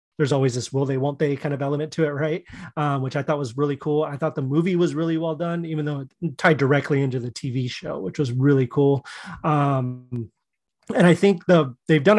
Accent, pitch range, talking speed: American, 135-160 Hz, 215 wpm